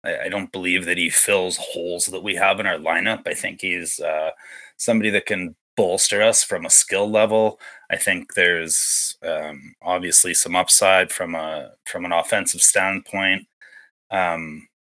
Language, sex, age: English, male, 30-49